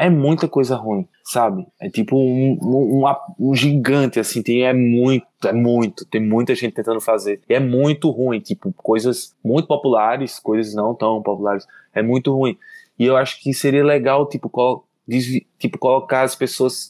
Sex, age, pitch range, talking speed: male, 20-39, 110-135 Hz, 180 wpm